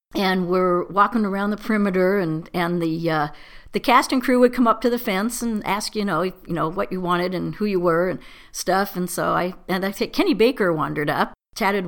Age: 50-69